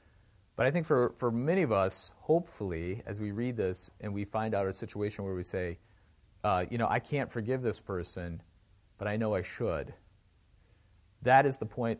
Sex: male